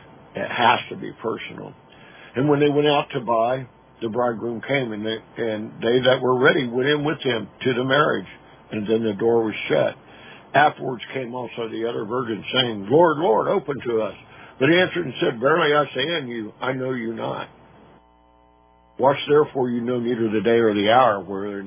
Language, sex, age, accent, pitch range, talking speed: English, male, 60-79, American, 105-130 Hz, 200 wpm